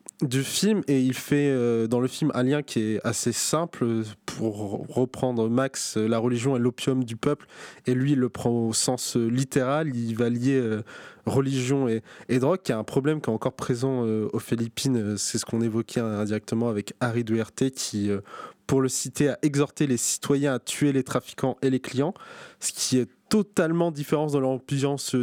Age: 20-39